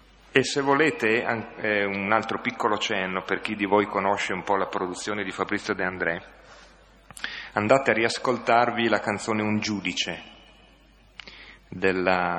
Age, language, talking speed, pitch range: 30-49, Italian, 135 wpm, 90-105 Hz